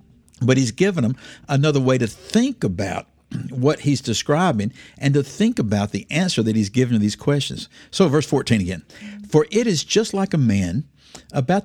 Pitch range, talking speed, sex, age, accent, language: 105-155 Hz, 185 wpm, male, 60-79, American, English